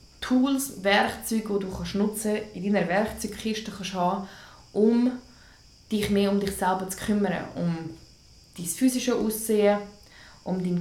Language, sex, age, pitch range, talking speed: English, female, 20-39, 185-210 Hz, 140 wpm